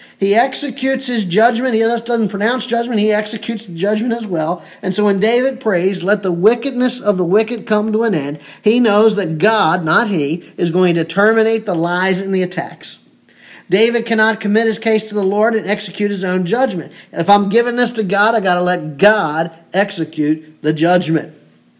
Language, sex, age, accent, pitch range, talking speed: English, male, 40-59, American, 180-230 Hz, 195 wpm